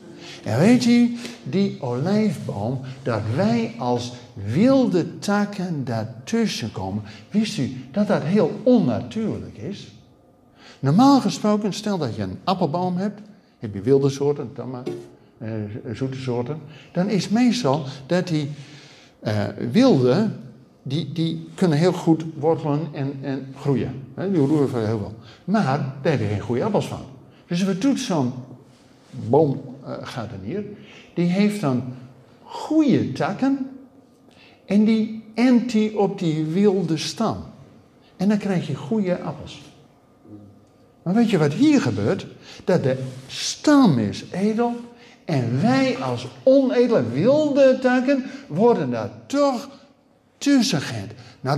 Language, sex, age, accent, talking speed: Dutch, male, 60-79, Dutch, 130 wpm